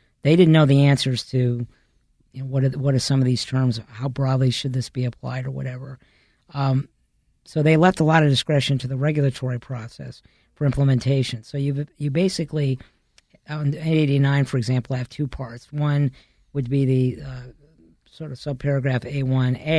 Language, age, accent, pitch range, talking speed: English, 50-69, American, 125-140 Hz, 180 wpm